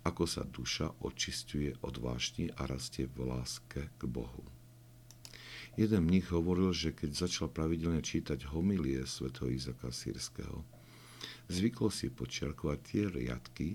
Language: Slovak